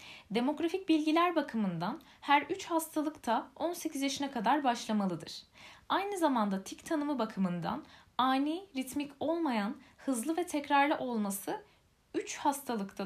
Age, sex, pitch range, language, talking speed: 10-29, female, 220-310 Hz, Turkish, 110 wpm